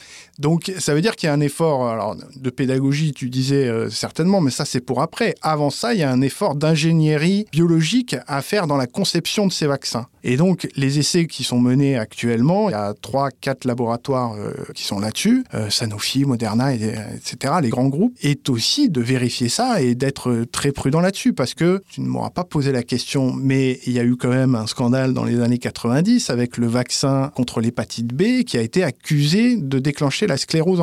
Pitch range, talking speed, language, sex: 125-160 Hz, 210 wpm, French, male